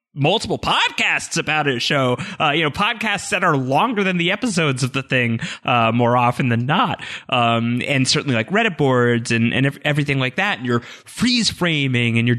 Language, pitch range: English, 115-160 Hz